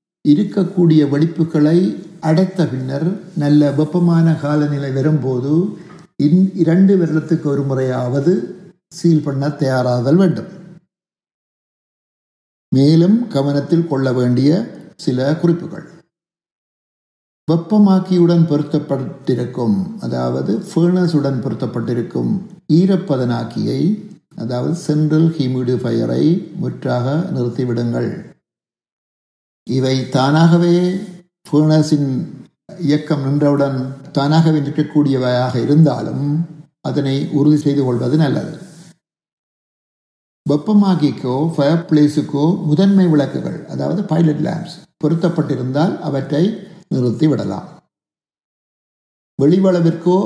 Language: Tamil